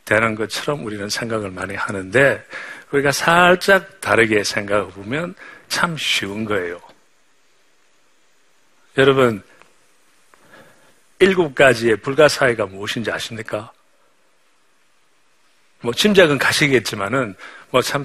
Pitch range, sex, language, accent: 110-140 Hz, male, Korean, native